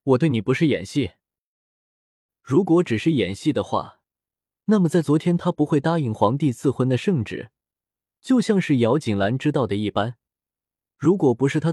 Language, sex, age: Chinese, male, 20-39